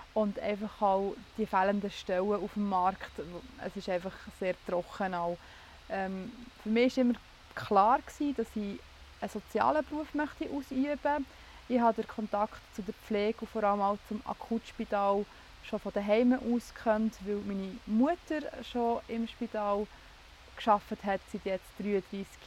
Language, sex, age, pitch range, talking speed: German, female, 20-39, 190-220 Hz, 145 wpm